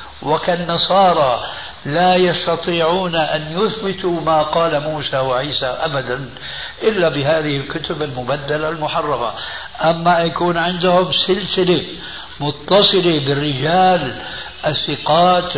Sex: male